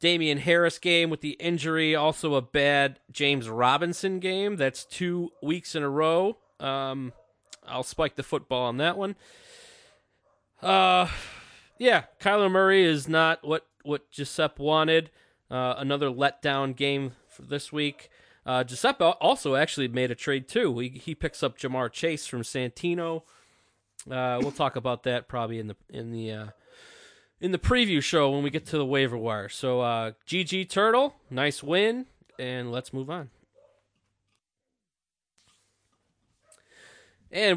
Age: 20-39